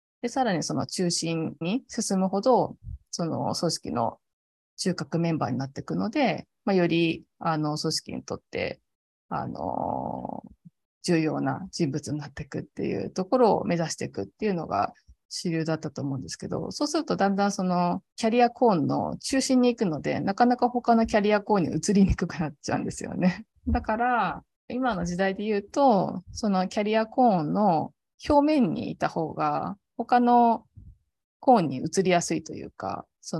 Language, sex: Japanese, female